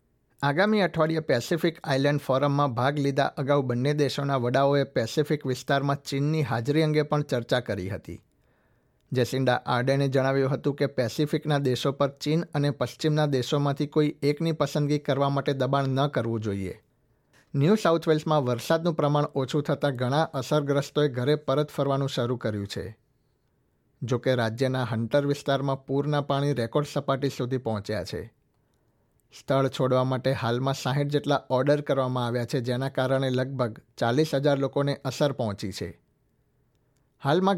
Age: 60-79